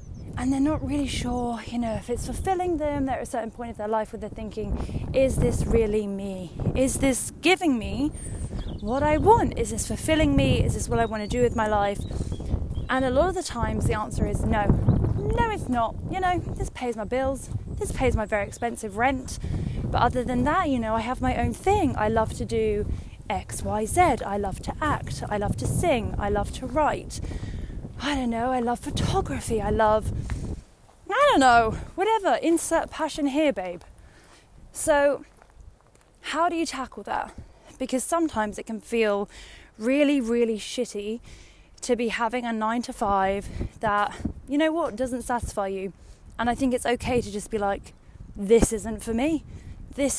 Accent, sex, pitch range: British, female, 220-285 Hz